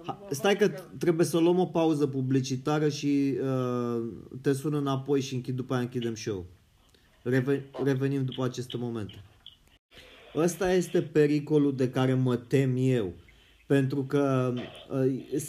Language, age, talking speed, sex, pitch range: Romanian, 20-39, 130 wpm, male, 125-155 Hz